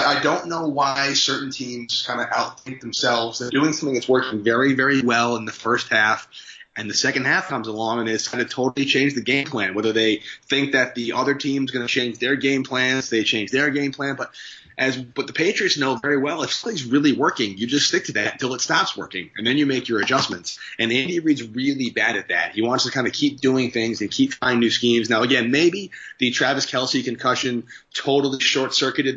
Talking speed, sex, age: 230 wpm, male, 30-49